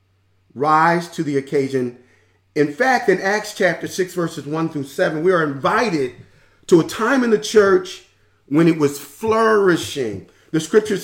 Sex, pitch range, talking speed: male, 125-175 Hz, 160 wpm